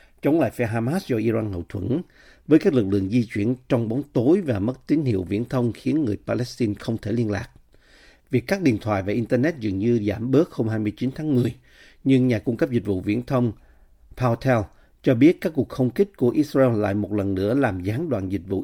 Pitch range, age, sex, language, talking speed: 105-130 Hz, 50-69, male, Vietnamese, 225 wpm